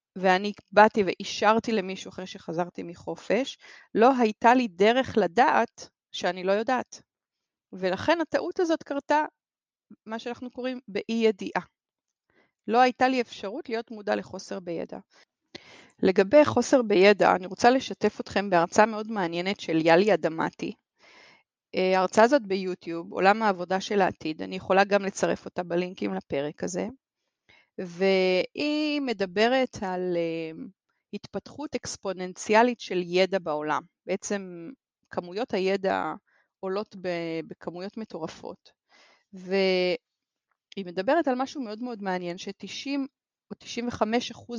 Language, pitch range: Hebrew, 185-245 Hz